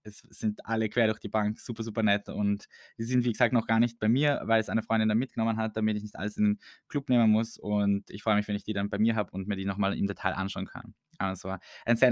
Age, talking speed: 20-39, 290 wpm